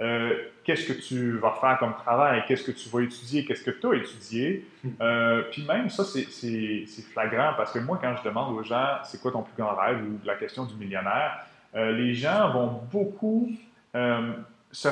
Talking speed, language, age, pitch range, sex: 210 wpm, French, 30-49, 115-145 Hz, male